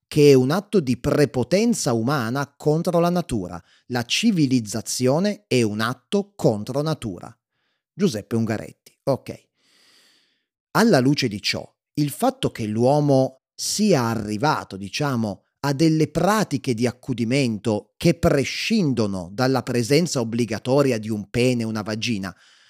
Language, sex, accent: Italian, male, native